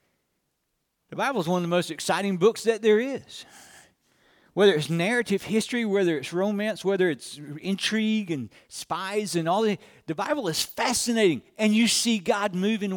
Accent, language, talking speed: American, English, 170 wpm